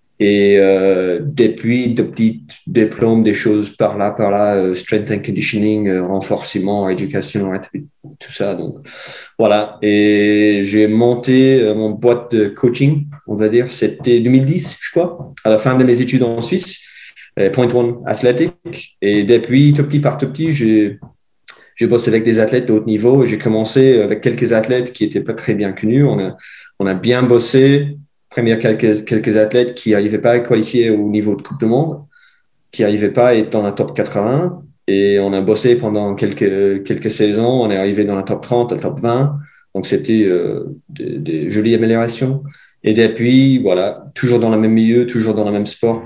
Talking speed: 190 wpm